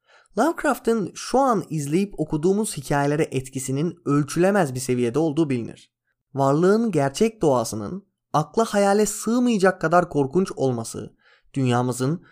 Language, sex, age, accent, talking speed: Turkish, male, 30-49, native, 105 wpm